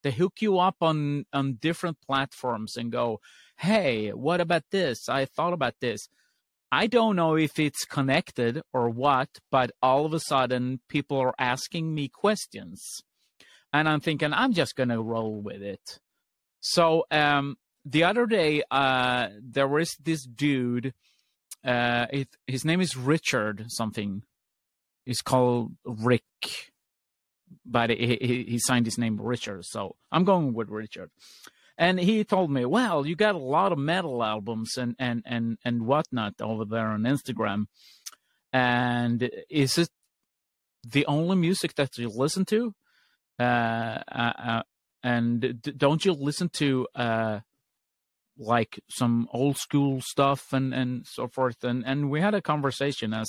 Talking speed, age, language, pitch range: 150 wpm, 30-49, English, 120-155 Hz